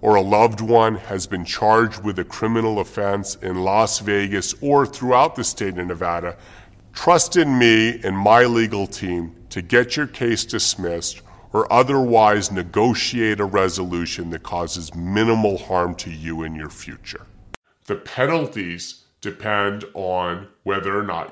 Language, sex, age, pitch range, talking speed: English, female, 40-59, 95-115 Hz, 150 wpm